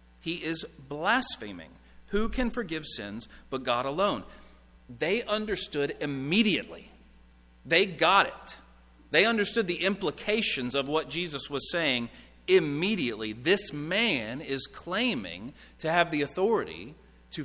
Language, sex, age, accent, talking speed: English, male, 40-59, American, 120 wpm